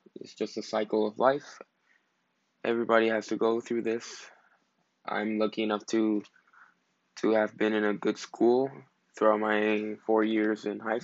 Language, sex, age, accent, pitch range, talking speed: English, male, 20-39, American, 110-115 Hz, 160 wpm